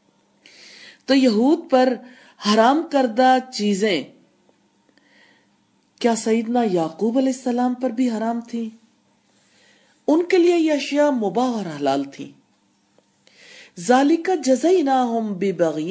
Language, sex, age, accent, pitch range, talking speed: English, female, 40-59, Indian, 210-275 Hz, 90 wpm